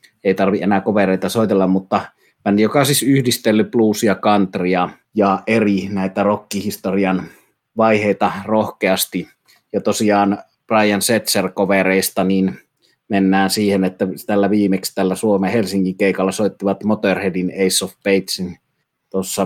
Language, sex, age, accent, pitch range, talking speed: Finnish, male, 30-49, native, 95-110 Hz, 115 wpm